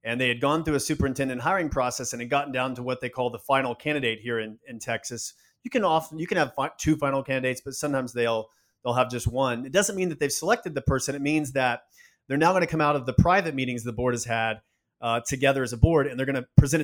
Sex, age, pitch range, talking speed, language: male, 30-49, 130-165 Hz, 270 wpm, English